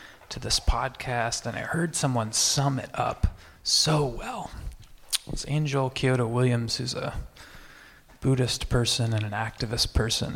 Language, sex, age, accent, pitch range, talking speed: English, male, 30-49, American, 125-160 Hz, 145 wpm